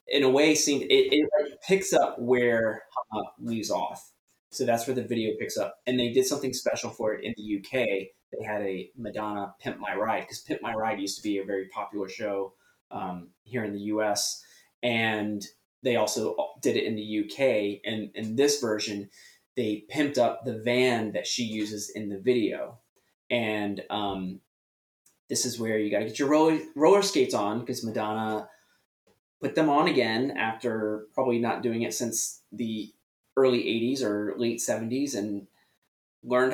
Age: 20-39